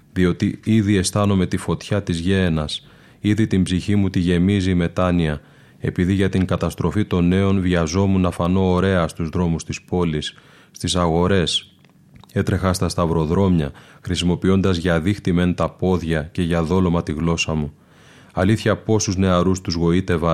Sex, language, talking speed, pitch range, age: male, Greek, 150 wpm, 85-95 Hz, 20-39